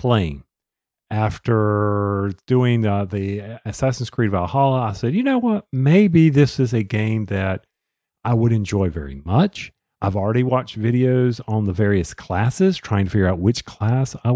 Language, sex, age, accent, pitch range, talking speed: English, male, 50-69, American, 105-155 Hz, 165 wpm